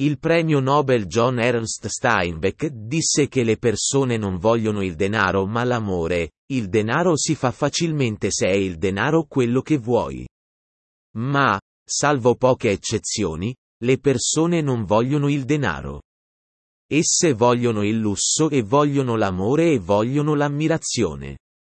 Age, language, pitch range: 30-49, Italian, 100-145 Hz